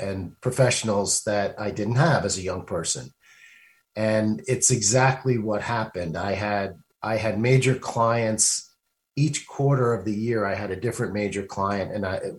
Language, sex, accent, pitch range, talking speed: English, male, American, 105-130 Hz, 165 wpm